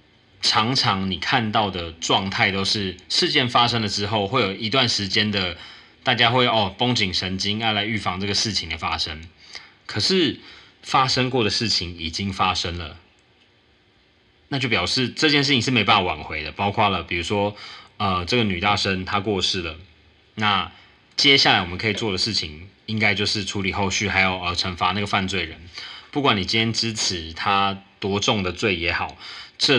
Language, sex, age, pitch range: Chinese, male, 20-39, 90-110 Hz